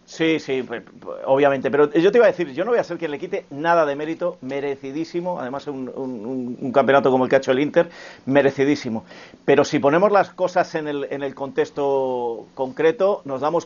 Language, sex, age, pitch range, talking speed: Spanish, male, 40-59, 140-175 Hz, 200 wpm